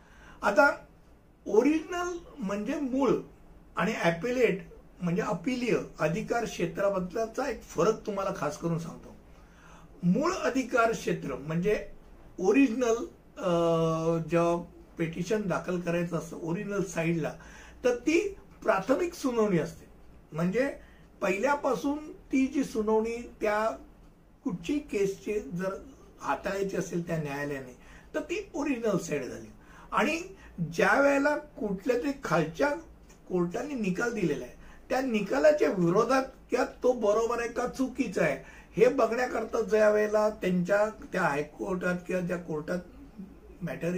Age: 60-79